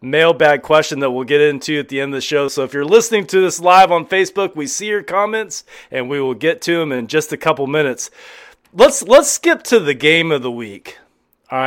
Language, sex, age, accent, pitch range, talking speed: English, male, 30-49, American, 140-200 Hz, 235 wpm